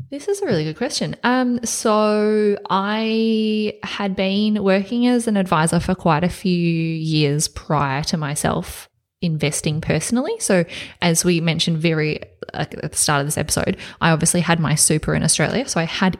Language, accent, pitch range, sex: English, Australian, 160-195 Hz, female